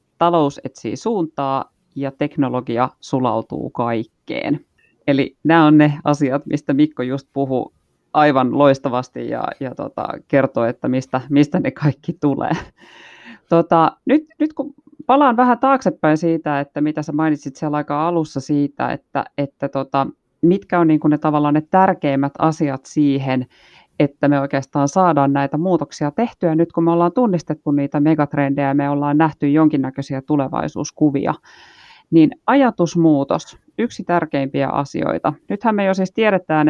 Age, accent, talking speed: 30-49, native, 140 wpm